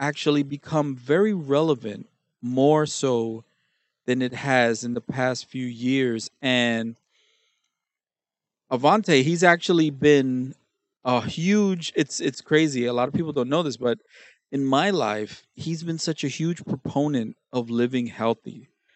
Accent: American